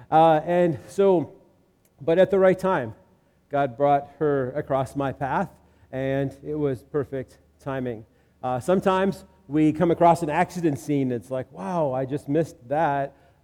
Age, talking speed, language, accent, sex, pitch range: 40-59, 150 wpm, English, American, male, 130-160 Hz